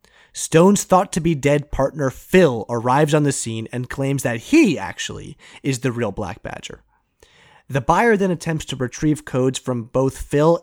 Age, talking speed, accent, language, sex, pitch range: 30-49, 160 wpm, American, English, male, 125-165 Hz